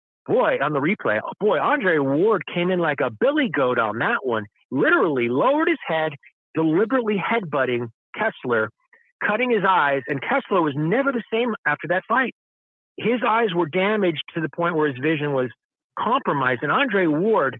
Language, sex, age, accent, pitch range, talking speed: English, male, 40-59, American, 135-185 Hz, 170 wpm